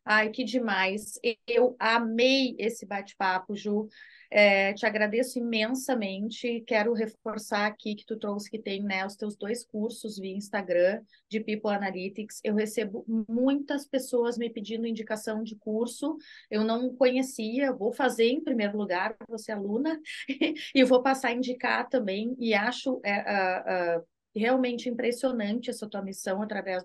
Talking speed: 140 wpm